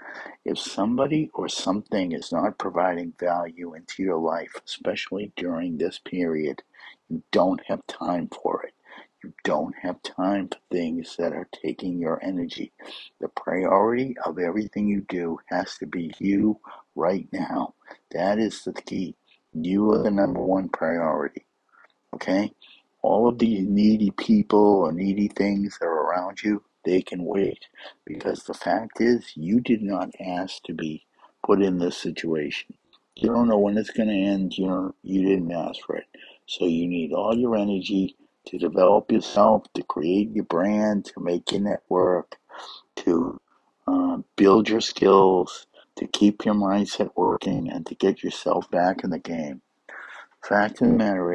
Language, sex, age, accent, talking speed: English, male, 60-79, American, 160 wpm